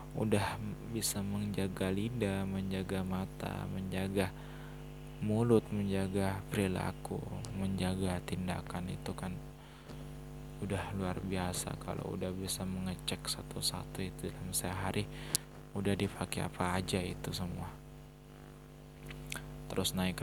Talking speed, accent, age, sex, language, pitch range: 100 wpm, native, 20-39, male, Indonesian, 90-95 Hz